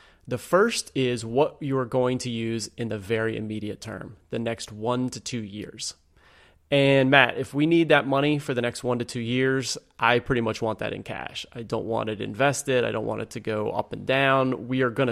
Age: 30-49